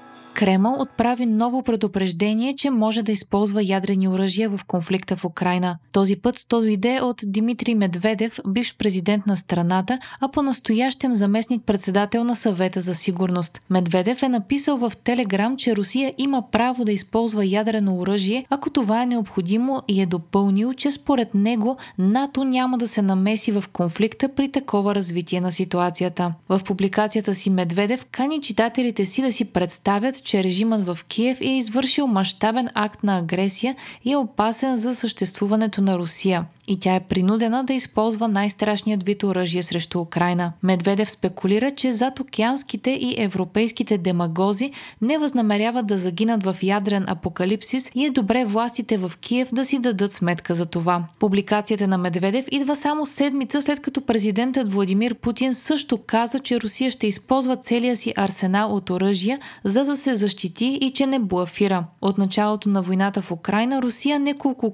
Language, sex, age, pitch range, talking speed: Bulgarian, female, 20-39, 195-250 Hz, 160 wpm